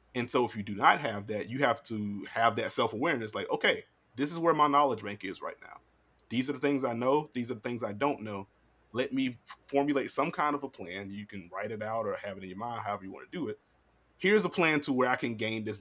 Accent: American